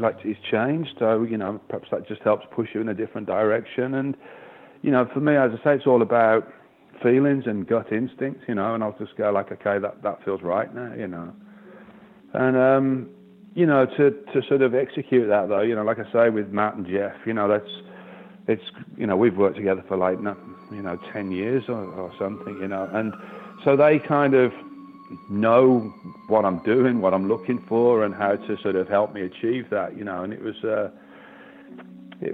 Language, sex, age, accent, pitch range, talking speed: English, male, 40-59, British, 95-125 Hz, 215 wpm